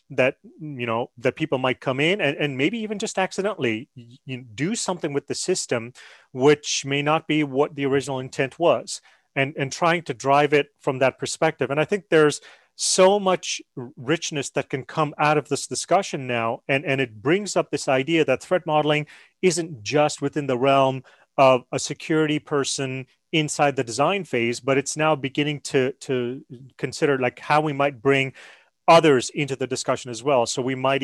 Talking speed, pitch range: 185 wpm, 130-155 Hz